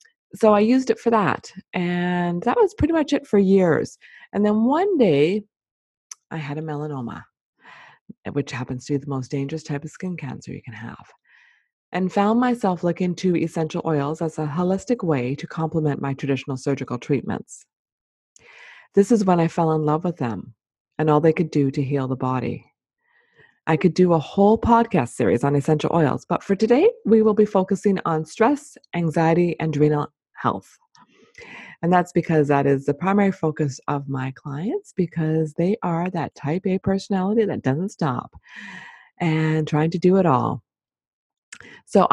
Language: English